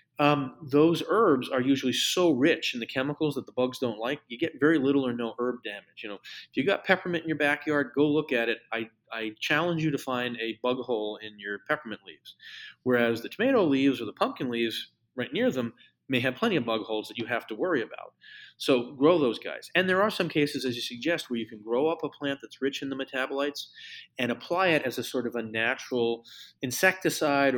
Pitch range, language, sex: 115-145 Hz, English, male